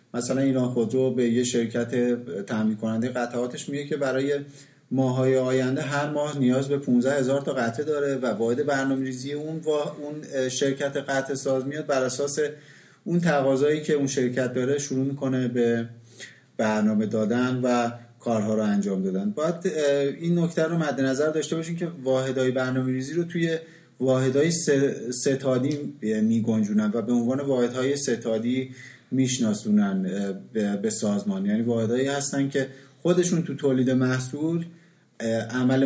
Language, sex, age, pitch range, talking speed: Persian, male, 30-49, 125-155 Hz, 145 wpm